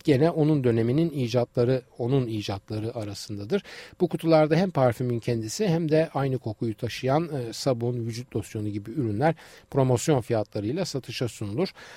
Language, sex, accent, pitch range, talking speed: Turkish, male, native, 115-150 Hz, 135 wpm